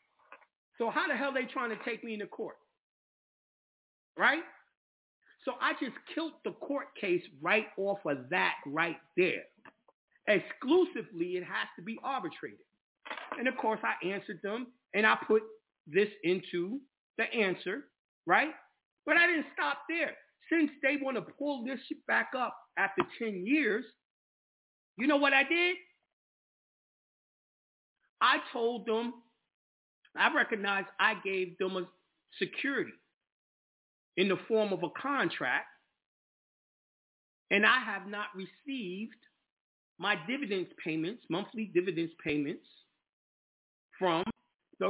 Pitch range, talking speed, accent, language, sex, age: 185-285 Hz, 130 wpm, American, English, male, 40-59